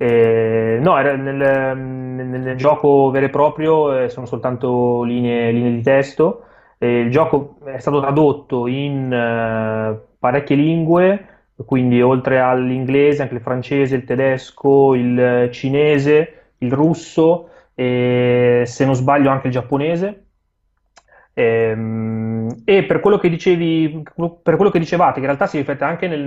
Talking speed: 140 wpm